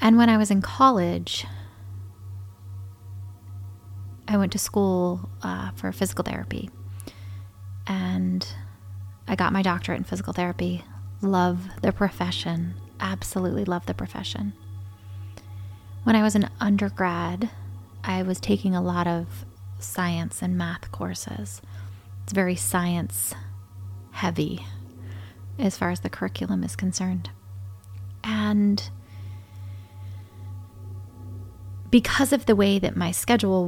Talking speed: 110 wpm